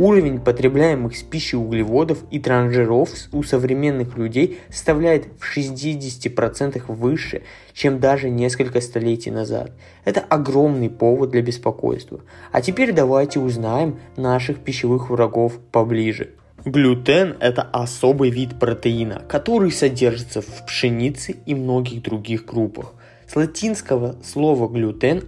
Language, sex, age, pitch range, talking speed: Russian, male, 20-39, 115-145 Hz, 115 wpm